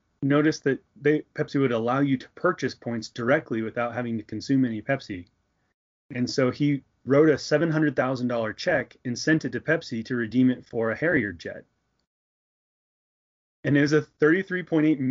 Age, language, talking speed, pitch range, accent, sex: 30-49, English, 175 wpm, 115-140 Hz, American, male